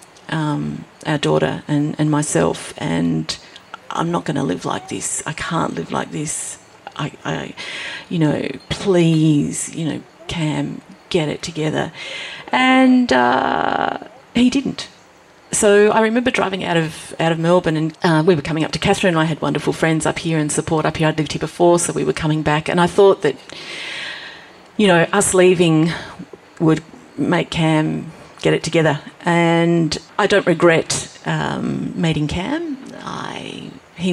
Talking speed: 165 wpm